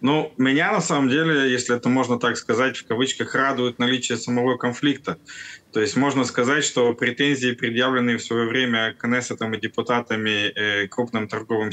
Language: Russian